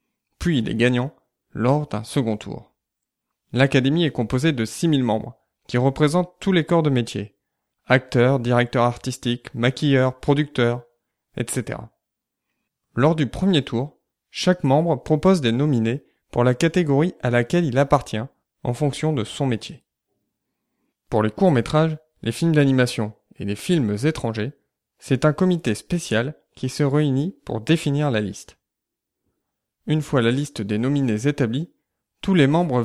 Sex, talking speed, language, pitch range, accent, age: male, 145 wpm, French, 115-155 Hz, French, 20-39